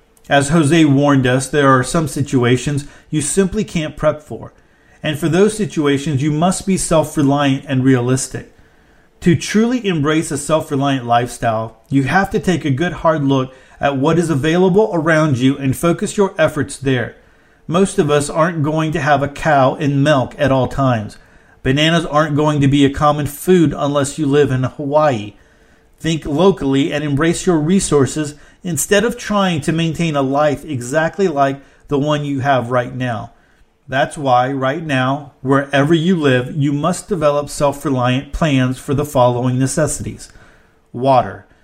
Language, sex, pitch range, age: English, male, 130-160 Hz, 40-59